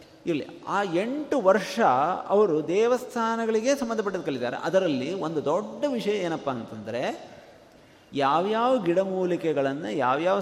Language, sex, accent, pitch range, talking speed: Kannada, male, native, 145-210 Hz, 100 wpm